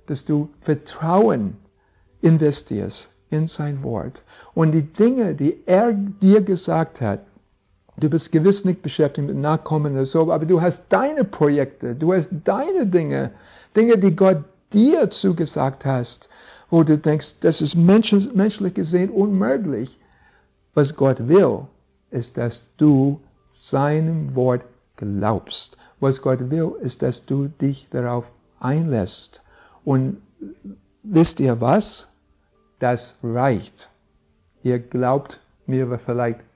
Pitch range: 125-175 Hz